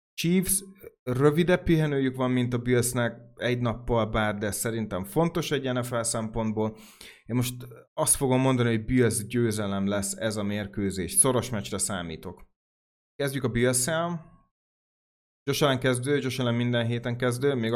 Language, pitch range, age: Hungarian, 110-130 Hz, 30-49